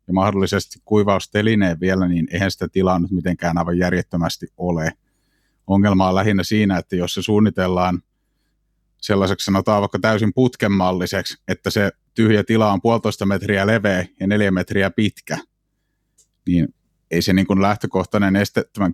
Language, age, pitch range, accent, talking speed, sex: Finnish, 30-49, 90-105 Hz, native, 140 wpm, male